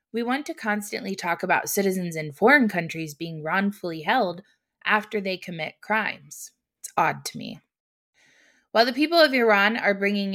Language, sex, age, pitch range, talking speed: English, female, 20-39, 170-215 Hz, 160 wpm